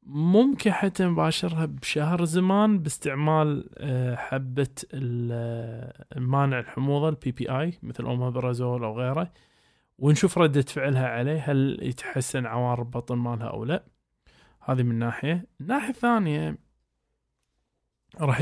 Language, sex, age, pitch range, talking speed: Arabic, male, 20-39, 125-155 Hz, 100 wpm